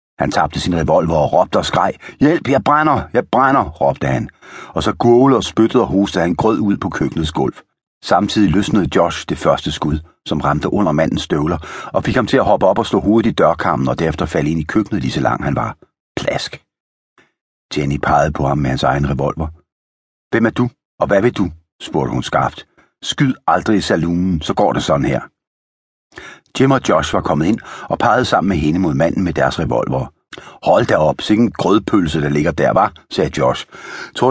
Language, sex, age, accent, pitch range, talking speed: Danish, male, 60-79, native, 70-120 Hz, 205 wpm